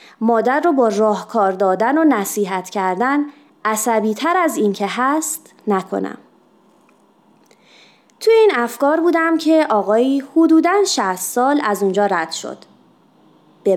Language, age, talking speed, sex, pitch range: Persian, 30-49, 125 wpm, female, 210-315 Hz